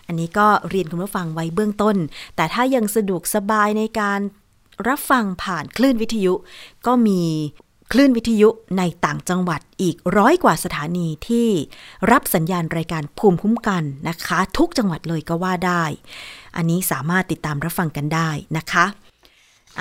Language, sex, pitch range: Thai, female, 170-215 Hz